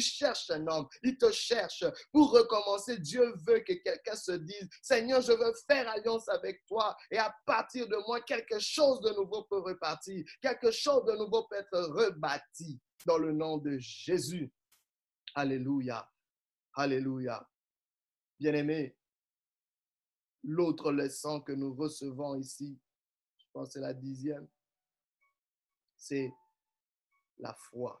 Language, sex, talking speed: French, male, 135 wpm